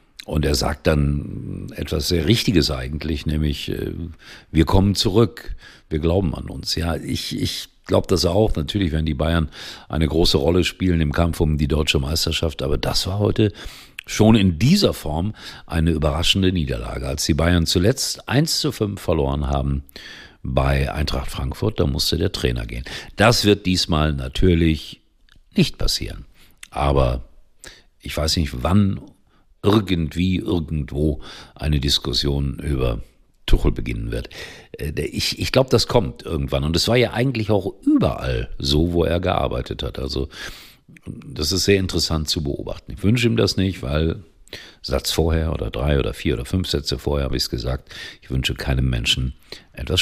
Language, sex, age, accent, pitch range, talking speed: German, male, 50-69, German, 70-95 Hz, 160 wpm